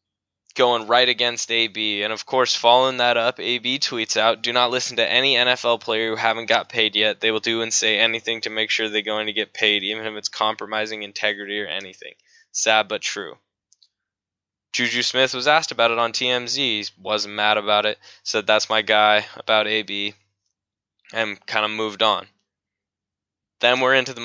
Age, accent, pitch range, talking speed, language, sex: 10-29, American, 105-125 Hz, 190 wpm, English, male